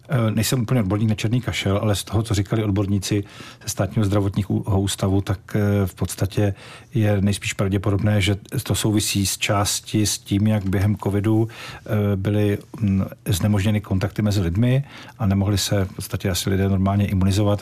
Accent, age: native, 50-69